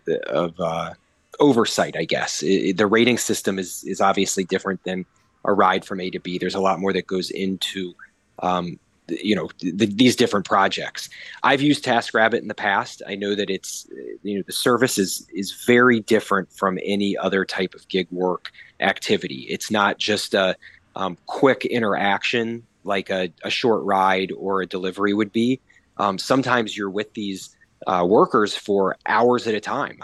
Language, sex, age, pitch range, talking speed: English, male, 30-49, 95-120 Hz, 185 wpm